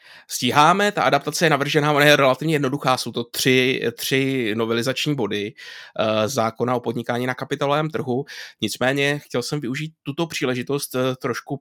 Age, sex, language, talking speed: 20-39, male, Czech, 145 wpm